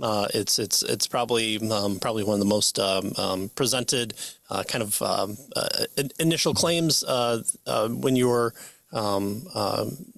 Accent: American